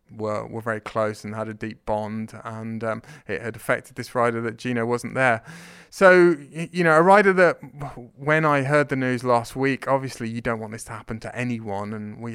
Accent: British